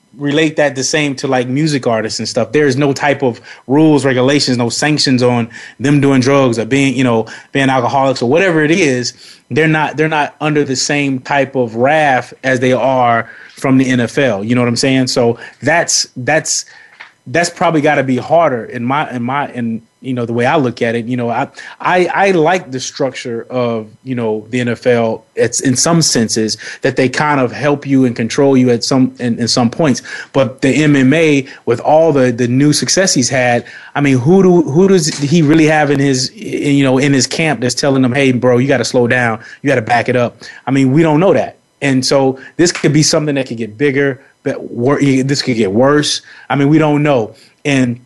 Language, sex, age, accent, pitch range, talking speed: English, male, 30-49, American, 125-145 Hz, 225 wpm